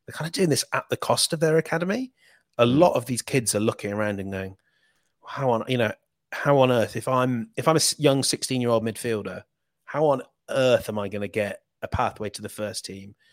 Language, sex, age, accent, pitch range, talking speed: English, male, 30-49, British, 105-135 Hz, 220 wpm